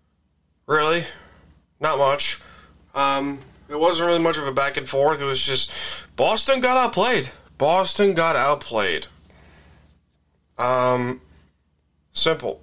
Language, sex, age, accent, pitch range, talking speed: English, male, 30-49, American, 105-165 Hz, 105 wpm